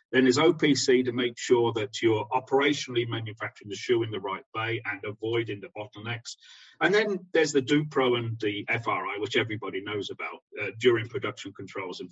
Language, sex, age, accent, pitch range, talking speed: English, male, 40-59, British, 115-180 Hz, 185 wpm